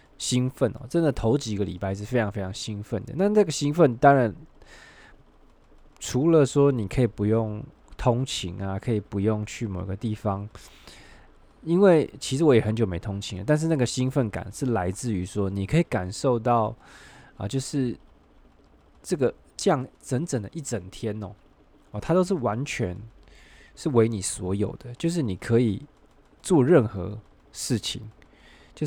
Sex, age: male, 20-39